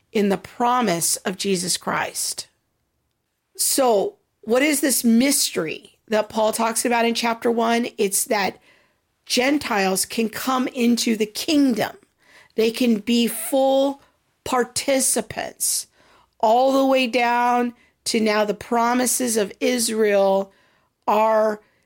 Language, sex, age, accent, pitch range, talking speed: English, female, 50-69, American, 215-250 Hz, 115 wpm